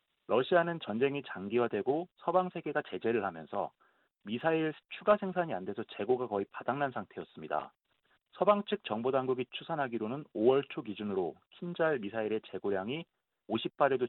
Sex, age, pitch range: male, 40-59, 120-175 Hz